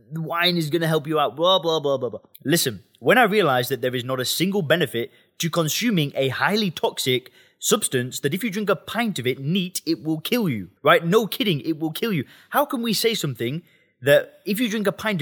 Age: 20-39